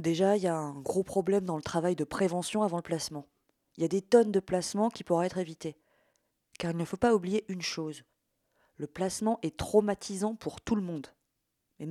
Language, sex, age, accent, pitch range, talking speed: French, female, 20-39, French, 155-210 Hz, 215 wpm